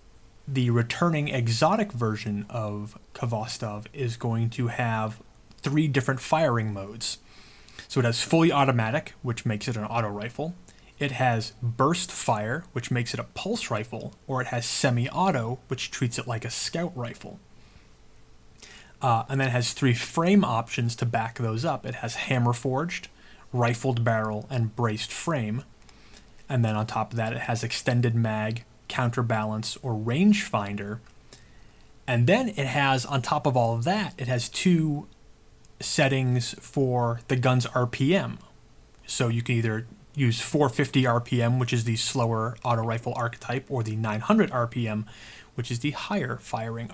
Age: 30-49